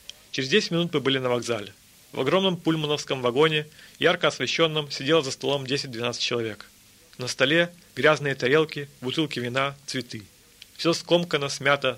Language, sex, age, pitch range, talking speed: German, male, 40-59, 125-165 Hz, 140 wpm